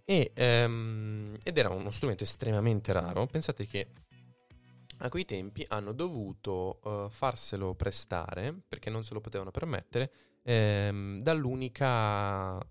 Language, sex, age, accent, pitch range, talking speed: Italian, male, 20-39, native, 100-120 Hz, 120 wpm